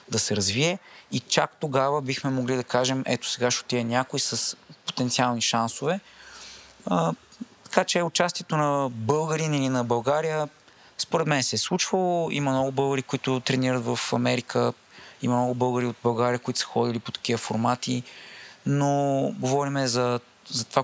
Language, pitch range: Bulgarian, 115-135 Hz